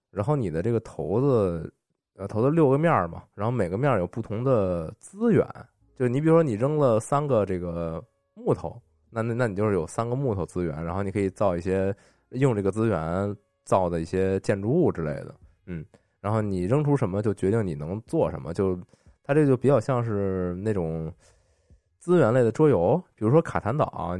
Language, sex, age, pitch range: Chinese, male, 20-39, 90-115 Hz